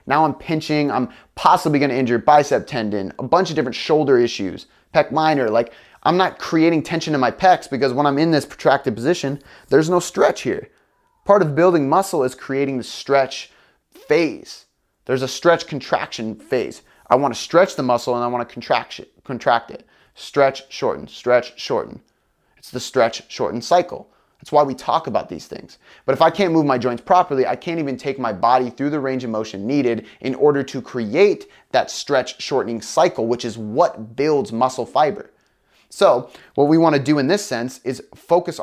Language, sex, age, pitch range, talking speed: English, male, 30-49, 125-160 Hz, 195 wpm